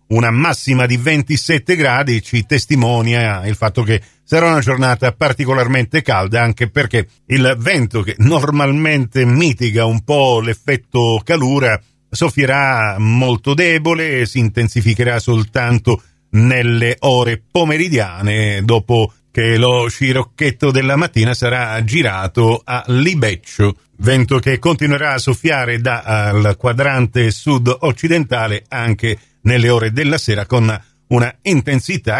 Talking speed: 115 wpm